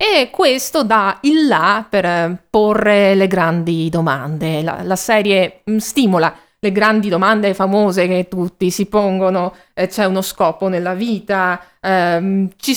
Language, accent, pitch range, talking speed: Italian, native, 185-250 Hz, 130 wpm